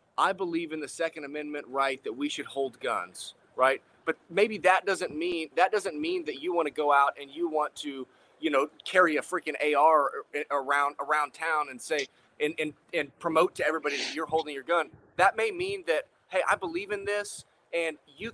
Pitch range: 140-205 Hz